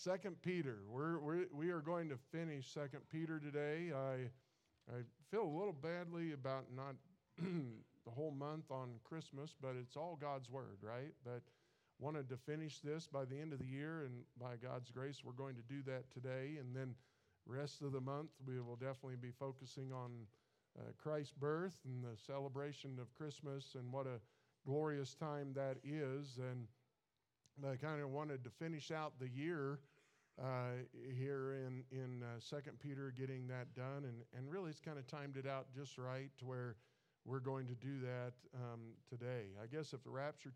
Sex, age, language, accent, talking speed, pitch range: male, 50-69, English, American, 185 wpm, 125-150 Hz